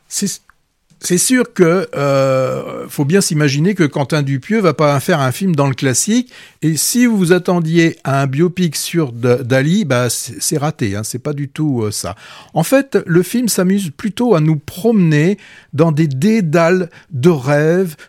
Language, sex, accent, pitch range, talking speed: French, male, French, 130-170 Hz, 170 wpm